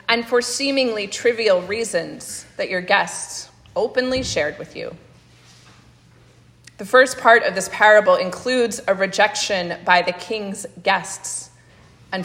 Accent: American